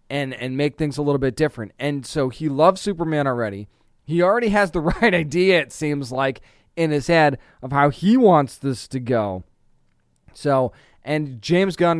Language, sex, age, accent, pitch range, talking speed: English, male, 20-39, American, 135-165 Hz, 185 wpm